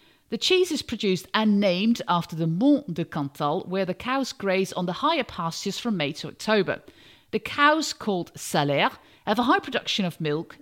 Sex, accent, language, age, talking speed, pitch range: female, British, English, 50-69, 185 wpm, 175-270 Hz